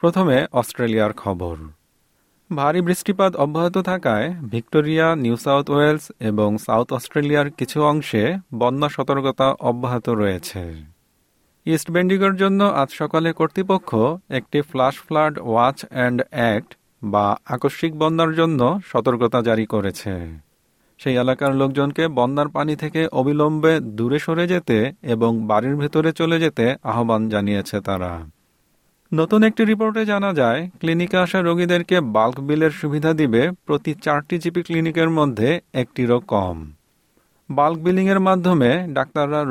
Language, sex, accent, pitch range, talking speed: Bengali, male, native, 115-165 Hz, 100 wpm